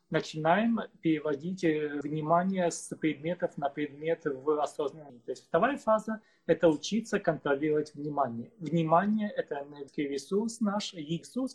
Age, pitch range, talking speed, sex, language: 30-49, 155-190 Hz, 130 wpm, male, Russian